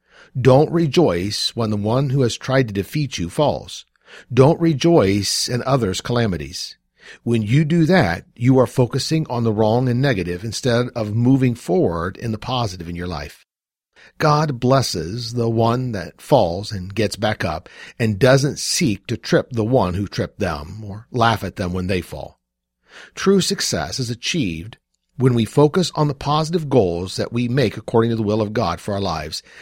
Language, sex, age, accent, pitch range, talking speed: English, male, 50-69, American, 95-140 Hz, 180 wpm